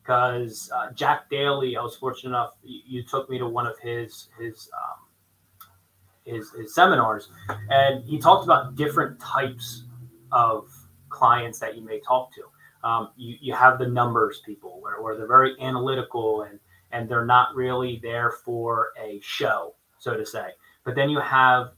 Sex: male